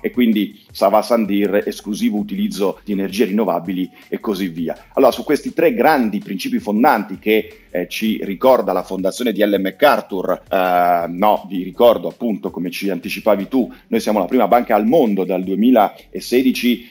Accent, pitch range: native, 100-140 Hz